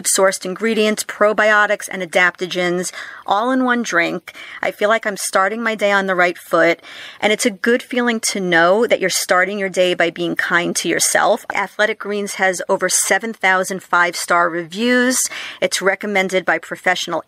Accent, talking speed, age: American, 165 wpm, 40-59